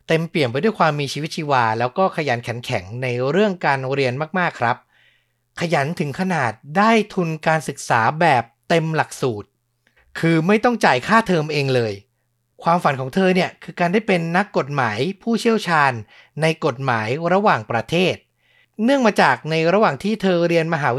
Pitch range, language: 130-175 Hz, Thai